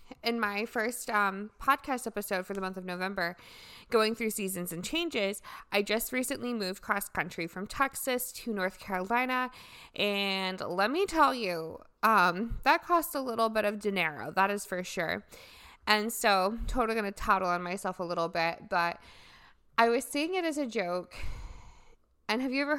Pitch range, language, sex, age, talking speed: 185-230 Hz, English, female, 20-39, 175 wpm